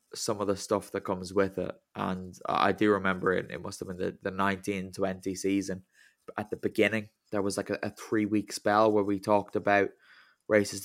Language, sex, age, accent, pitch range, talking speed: English, male, 10-29, British, 100-120 Hz, 210 wpm